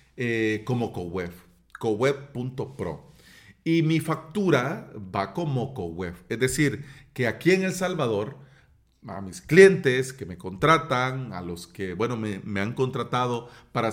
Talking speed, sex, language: 140 wpm, male, Spanish